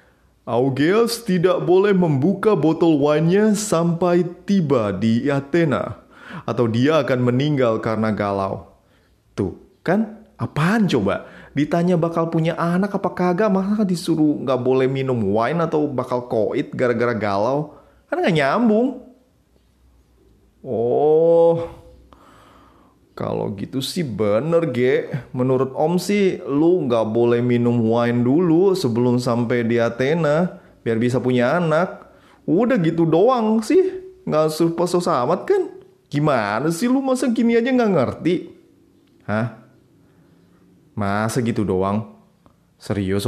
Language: Indonesian